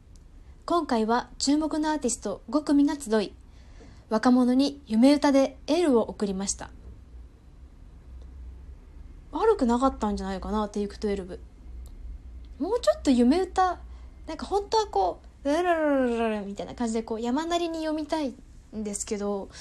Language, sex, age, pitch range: Japanese, female, 20-39, 200-290 Hz